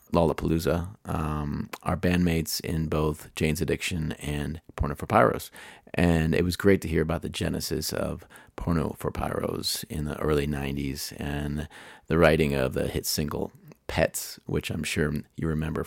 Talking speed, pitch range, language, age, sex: 160 wpm, 75-85 Hz, English, 30-49, male